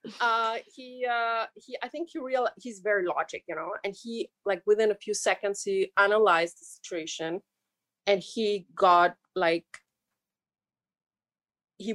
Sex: female